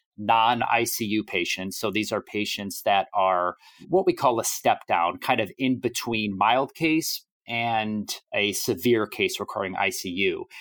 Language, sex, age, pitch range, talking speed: English, male, 30-49, 100-125 Hz, 140 wpm